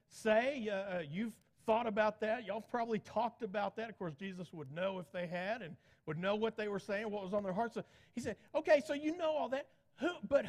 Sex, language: male, English